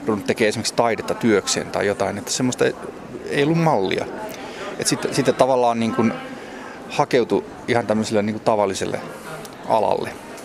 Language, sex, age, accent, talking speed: Finnish, male, 30-49, native, 130 wpm